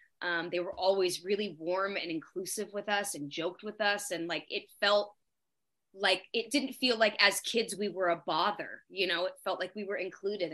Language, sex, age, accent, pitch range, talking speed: English, female, 20-39, American, 175-215 Hz, 210 wpm